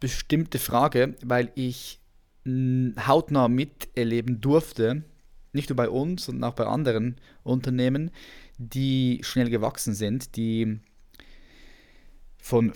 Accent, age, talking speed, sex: German, 20-39, 105 wpm, male